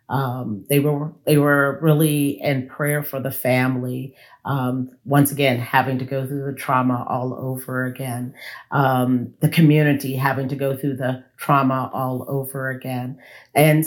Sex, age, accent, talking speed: female, 40-59, American, 155 wpm